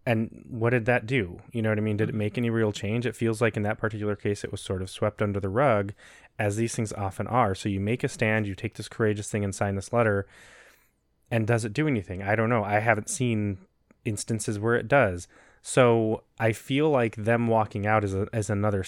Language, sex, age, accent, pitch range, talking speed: English, male, 20-39, American, 105-120 Hz, 240 wpm